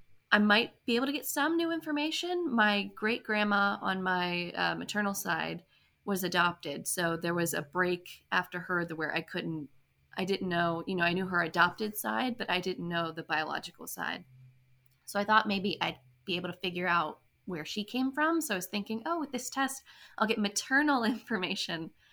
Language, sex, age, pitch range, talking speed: English, female, 20-39, 175-220 Hz, 200 wpm